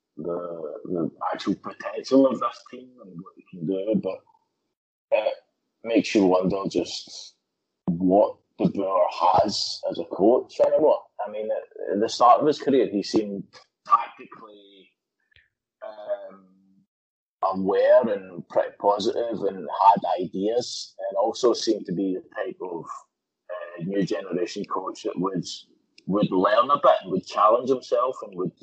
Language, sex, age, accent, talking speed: English, male, 20-39, British, 145 wpm